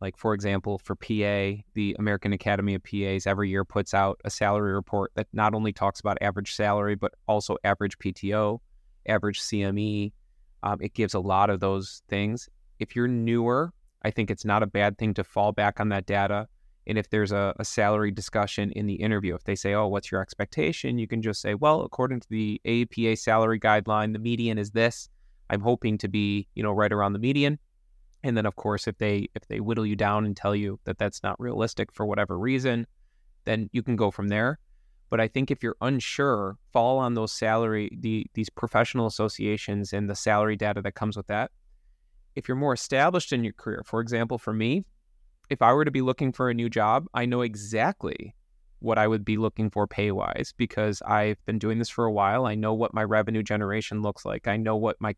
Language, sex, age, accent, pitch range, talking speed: English, male, 20-39, American, 100-115 Hz, 215 wpm